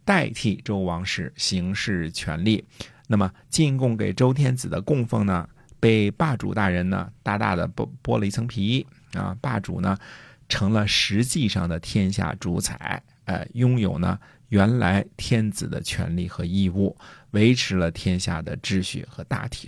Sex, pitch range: male, 95-125 Hz